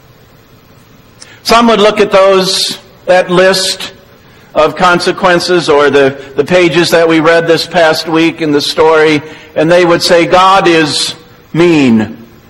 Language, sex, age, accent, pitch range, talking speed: English, male, 50-69, American, 145-190 Hz, 140 wpm